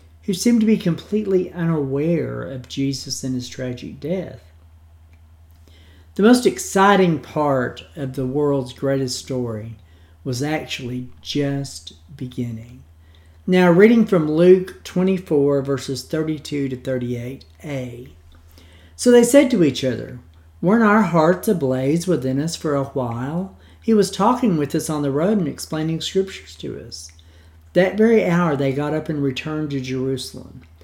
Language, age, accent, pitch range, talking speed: English, 50-69, American, 115-170 Hz, 140 wpm